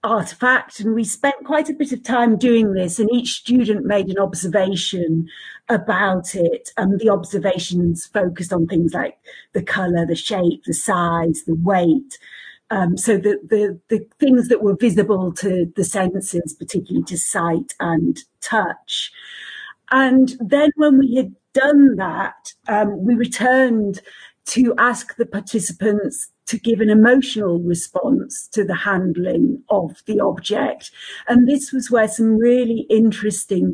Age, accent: 40-59, British